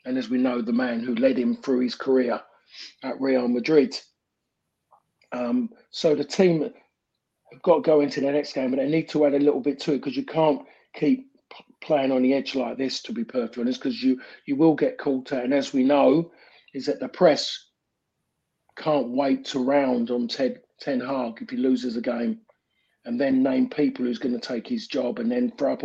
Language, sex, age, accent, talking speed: English, male, 40-59, British, 215 wpm